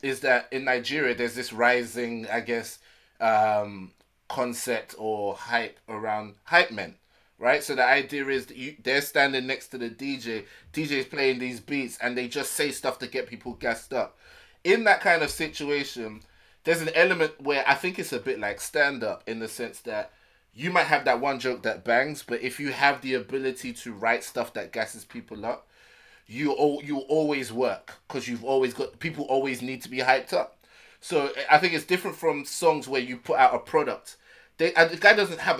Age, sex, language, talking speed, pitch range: 20-39, male, English, 195 wpm, 125-155 Hz